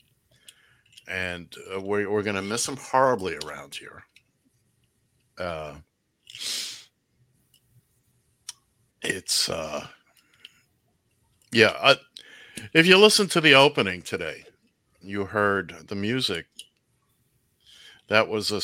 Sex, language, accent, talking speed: male, English, American, 90 wpm